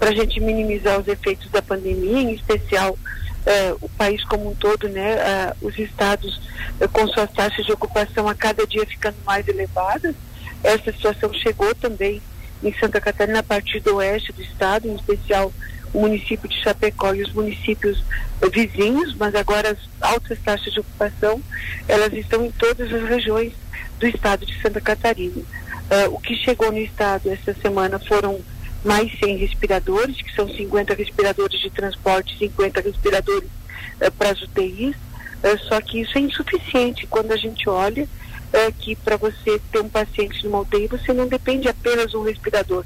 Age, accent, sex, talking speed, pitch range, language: 50-69, Brazilian, female, 175 wpm, 200-230 Hz, Portuguese